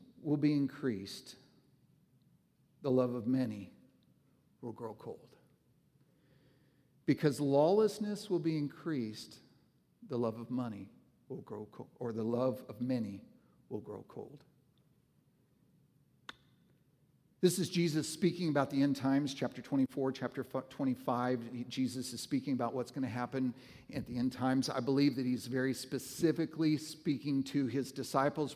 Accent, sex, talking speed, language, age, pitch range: American, male, 135 wpm, English, 50-69, 130-160 Hz